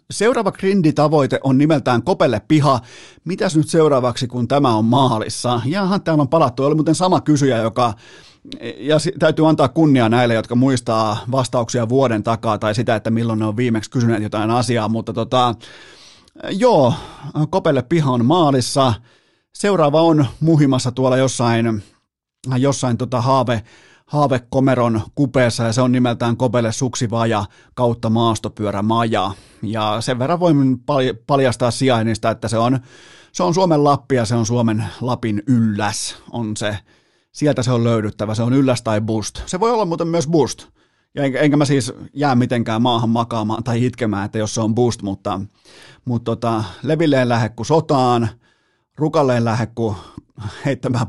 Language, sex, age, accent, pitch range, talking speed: Finnish, male, 30-49, native, 115-140 Hz, 150 wpm